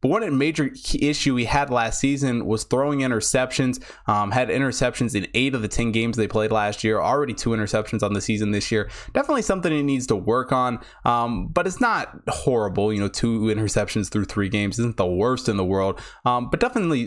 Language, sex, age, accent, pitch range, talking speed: English, male, 20-39, American, 105-135 Hz, 205 wpm